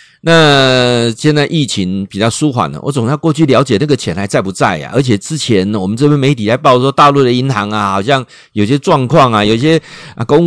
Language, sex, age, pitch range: Chinese, male, 50-69, 105-150 Hz